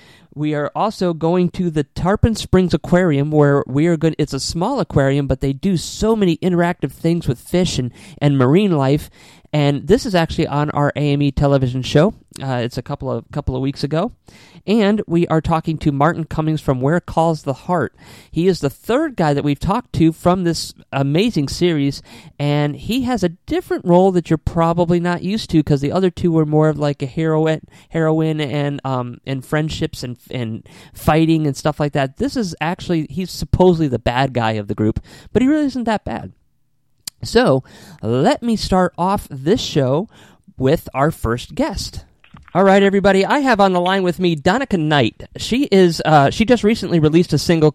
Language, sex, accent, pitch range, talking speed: English, male, American, 145-180 Hz, 195 wpm